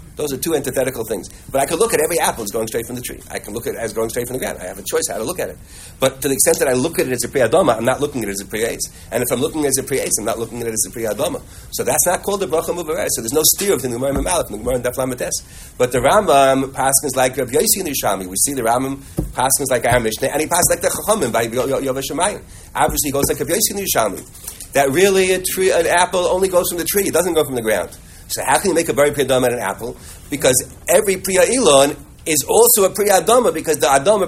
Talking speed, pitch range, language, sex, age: 280 wpm, 130-190 Hz, English, male, 30-49